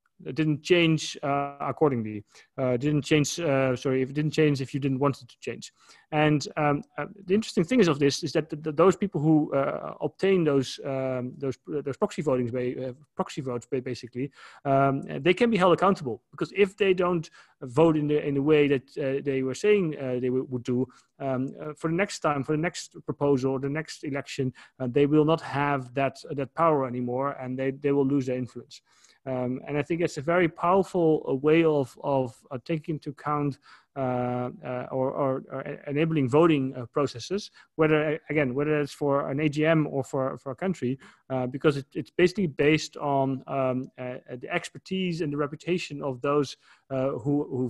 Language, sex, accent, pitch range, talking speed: English, male, Dutch, 130-155 Hz, 205 wpm